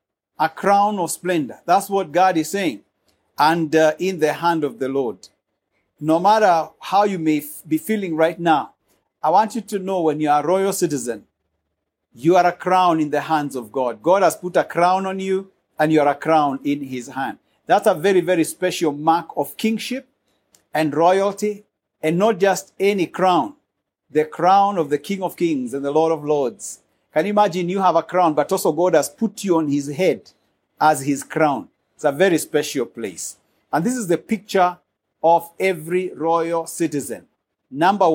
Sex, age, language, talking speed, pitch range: male, 50-69, English, 190 wpm, 150-190 Hz